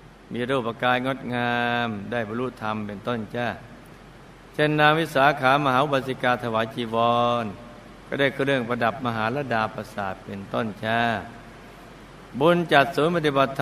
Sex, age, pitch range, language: male, 60-79, 115-135 Hz, Thai